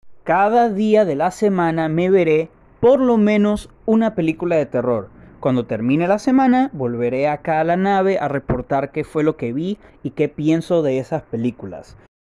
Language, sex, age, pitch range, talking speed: Spanish, male, 30-49, 135-185 Hz, 175 wpm